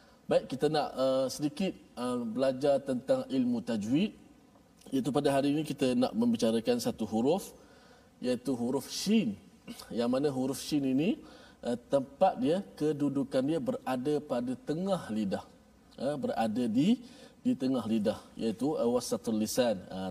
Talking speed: 140 wpm